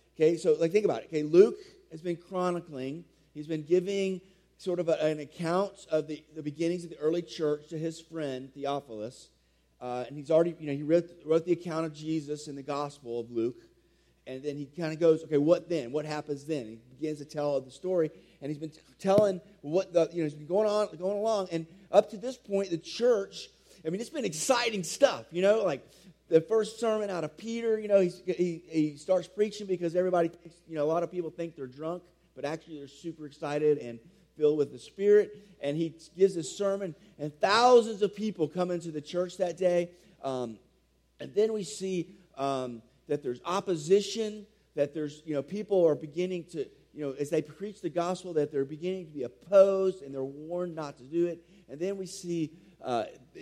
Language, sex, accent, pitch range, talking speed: English, male, American, 150-190 Hz, 215 wpm